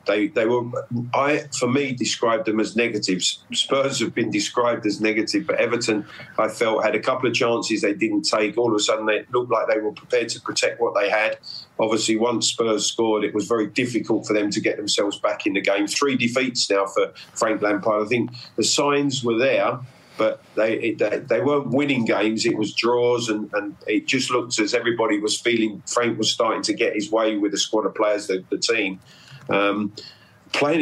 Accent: British